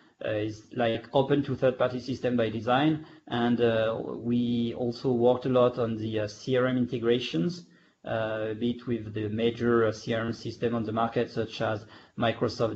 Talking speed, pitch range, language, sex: 170 wpm, 110-130 Hz, English, male